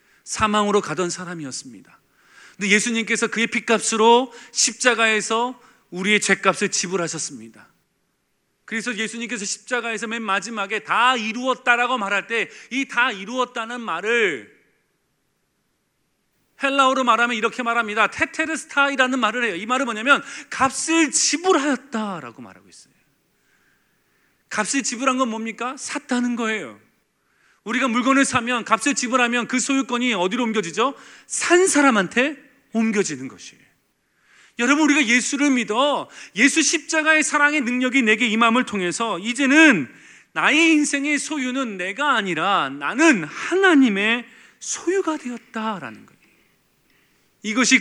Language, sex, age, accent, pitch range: Korean, male, 30-49, native, 210-265 Hz